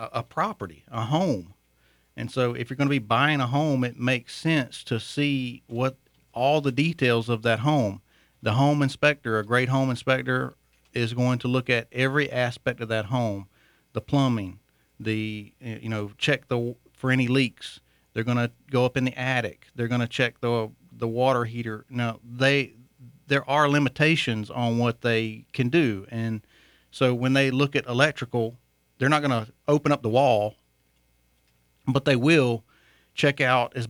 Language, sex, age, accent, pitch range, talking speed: English, male, 40-59, American, 110-130 Hz, 175 wpm